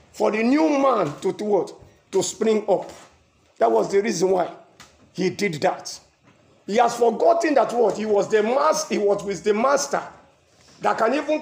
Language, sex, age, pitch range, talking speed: English, male, 50-69, 195-275 Hz, 180 wpm